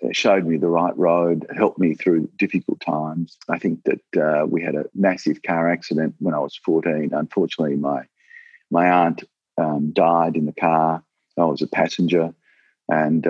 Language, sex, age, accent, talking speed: English, male, 50-69, Australian, 175 wpm